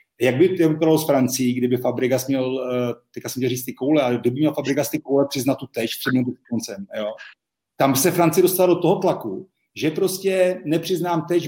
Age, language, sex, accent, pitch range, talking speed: 40-59, Czech, male, native, 135-160 Hz, 180 wpm